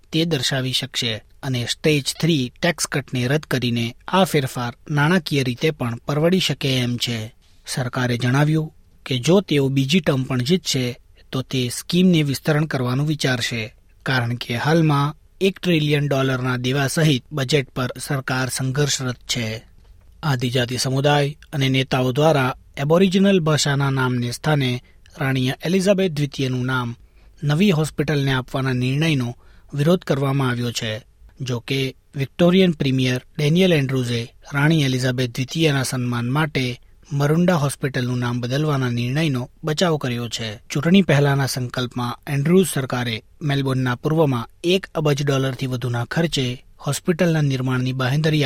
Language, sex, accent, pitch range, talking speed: Gujarati, male, native, 125-155 Hz, 120 wpm